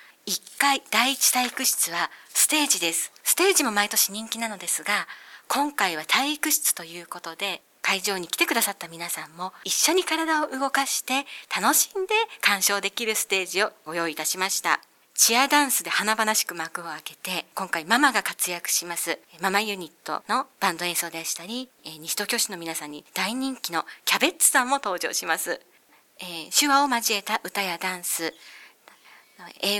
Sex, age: female, 40-59